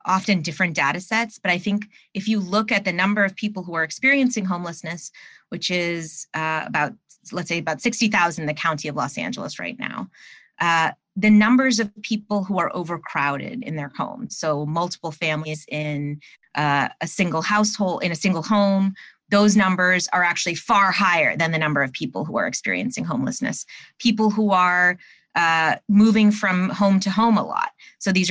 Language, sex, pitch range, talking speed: English, female, 165-210 Hz, 180 wpm